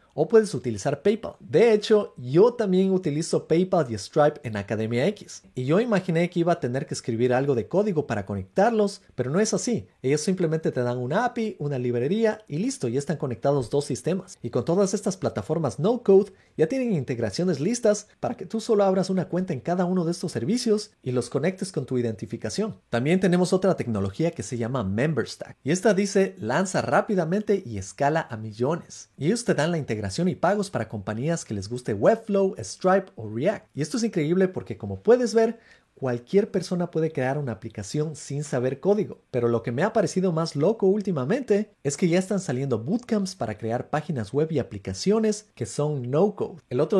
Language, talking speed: Spanish, 195 wpm